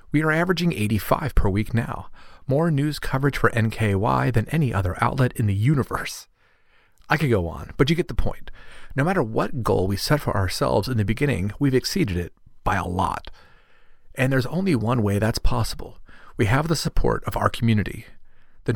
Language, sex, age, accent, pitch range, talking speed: English, male, 40-59, American, 100-140 Hz, 190 wpm